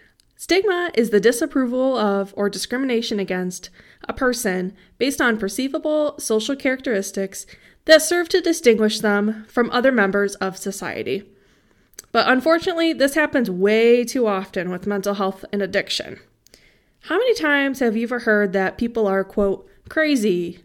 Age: 20-39